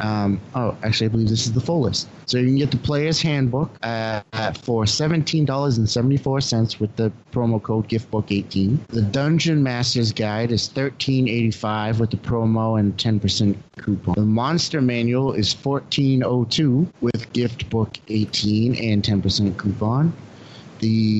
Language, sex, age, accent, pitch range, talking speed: English, male, 30-49, American, 110-130 Hz, 135 wpm